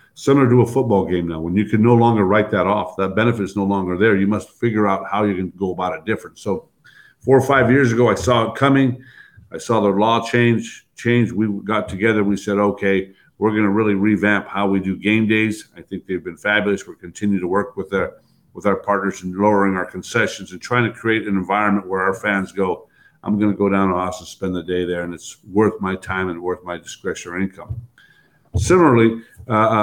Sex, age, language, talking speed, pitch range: male, 50-69, English, 230 wpm, 95-115 Hz